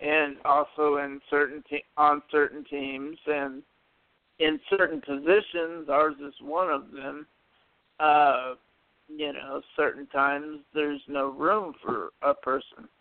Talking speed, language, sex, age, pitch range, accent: 130 wpm, English, male, 60-79, 145-165 Hz, American